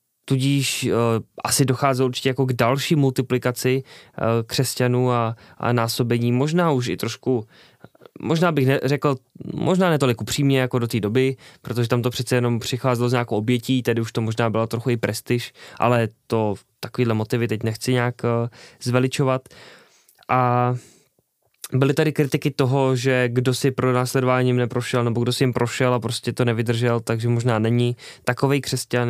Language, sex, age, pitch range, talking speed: Czech, male, 20-39, 115-130 Hz, 165 wpm